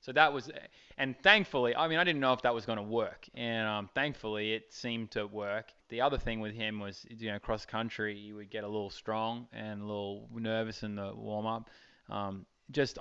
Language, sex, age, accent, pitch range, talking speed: English, male, 20-39, Australian, 105-125 Hz, 215 wpm